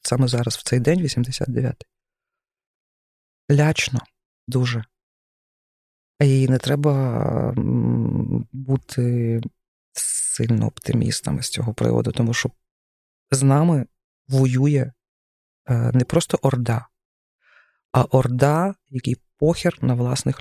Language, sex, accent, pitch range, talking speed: Ukrainian, female, native, 120-145 Hz, 90 wpm